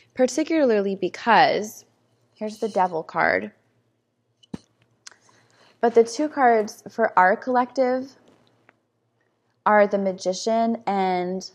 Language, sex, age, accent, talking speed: English, female, 20-39, American, 90 wpm